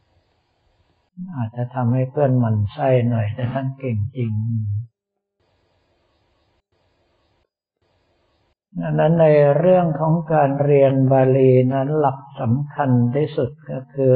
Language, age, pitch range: Thai, 60-79, 110-135 Hz